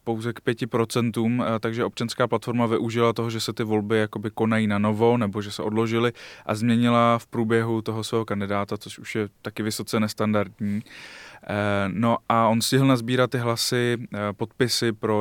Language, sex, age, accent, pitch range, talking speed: Czech, male, 20-39, native, 105-115 Hz, 165 wpm